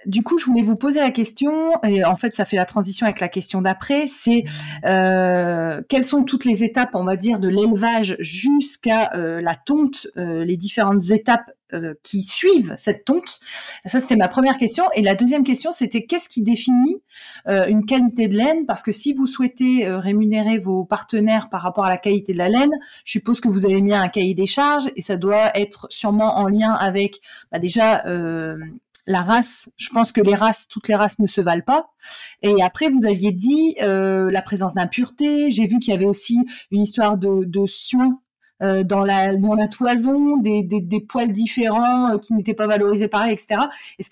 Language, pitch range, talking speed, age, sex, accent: French, 195-255 Hz, 205 wpm, 30-49, female, French